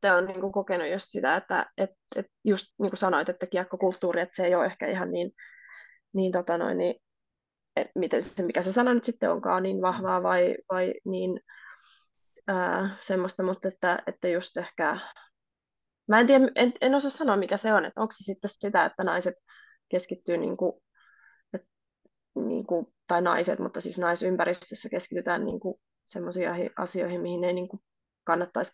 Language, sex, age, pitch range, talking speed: Finnish, female, 20-39, 180-210 Hz, 165 wpm